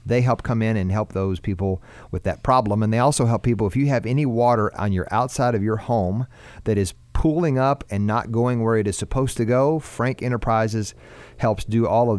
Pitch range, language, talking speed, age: 100-125 Hz, English, 225 wpm, 40-59